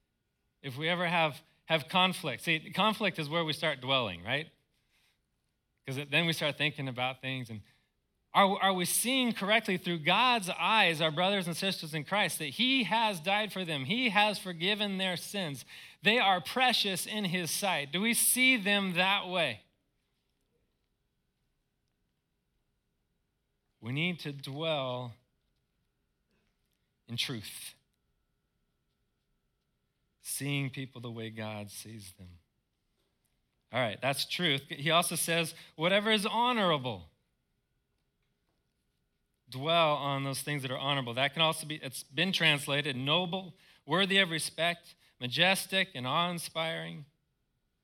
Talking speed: 130 wpm